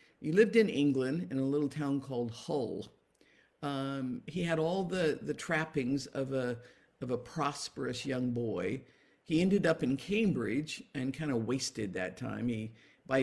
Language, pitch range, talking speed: English, 120-170 Hz, 170 wpm